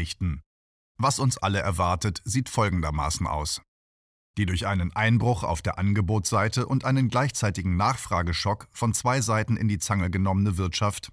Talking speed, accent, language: 140 wpm, German, German